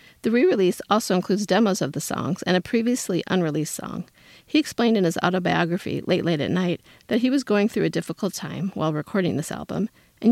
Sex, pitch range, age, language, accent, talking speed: female, 165-215 Hz, 40-59, English, American, 205 wpm